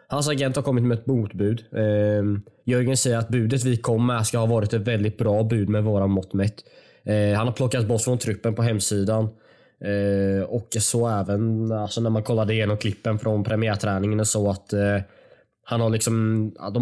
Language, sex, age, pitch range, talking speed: English, male, 20-39, 105-125 Hz, 180 wpm